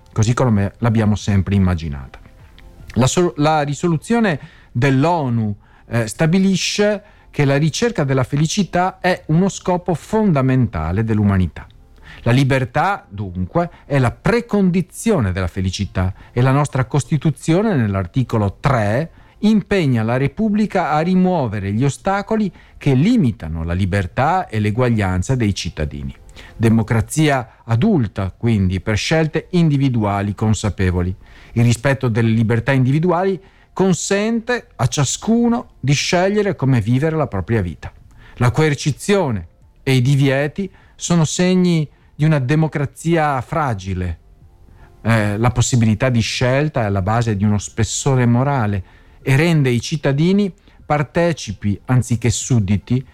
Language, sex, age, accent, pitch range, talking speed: Italian, male, 50-69, native, 105-160 Hz, 115 wpm